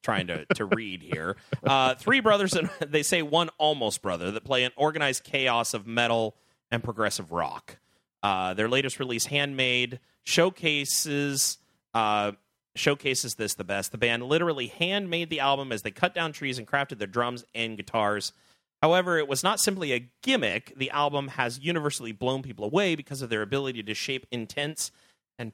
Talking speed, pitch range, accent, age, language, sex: 175 wpm, 115-145 Hz, American, 30-49, English, male